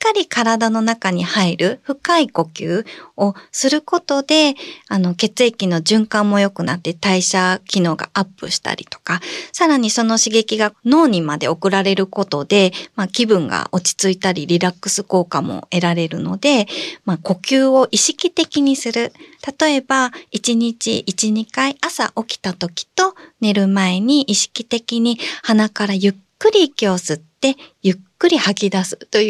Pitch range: 185-260 Hz